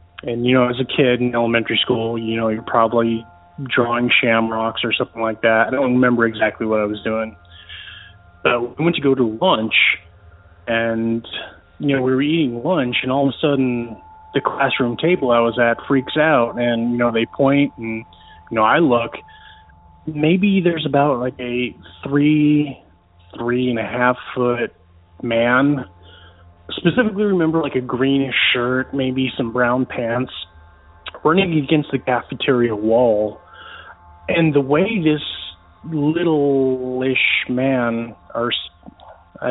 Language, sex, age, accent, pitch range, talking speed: English, male, 20-39, American, 110-135 Hz, 145 wpm